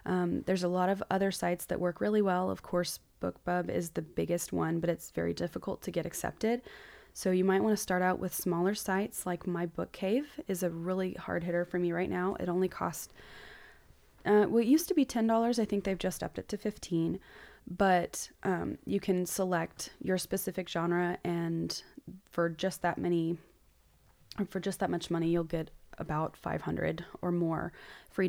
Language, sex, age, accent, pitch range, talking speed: English, female, 20-39, American, 175-200 Hz, 195 wpm